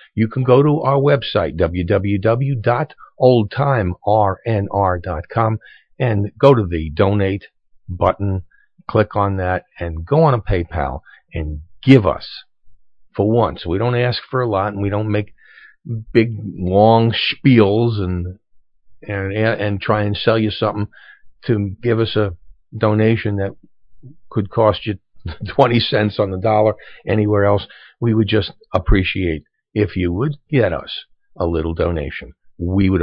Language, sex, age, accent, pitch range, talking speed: English, male, 50-69, American, 90-115 Hz, 140 wpm